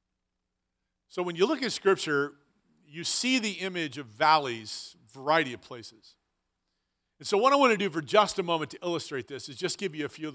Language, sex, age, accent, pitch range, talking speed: English, male, 40-59, American, 150-195 Hz, 210 wpm